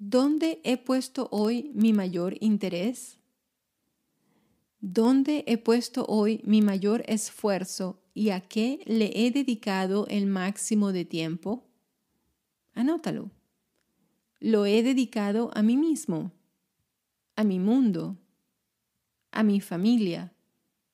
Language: Spanish